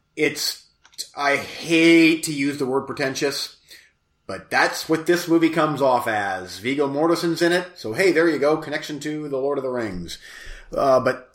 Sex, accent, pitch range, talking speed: male, American, 140-180 Hz, 180 wpm